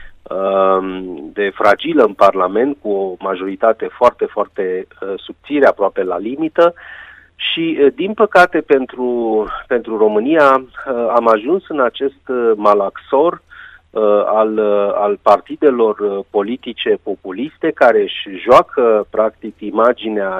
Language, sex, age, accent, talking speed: Romanian, male, 30-49, native, 100 wpm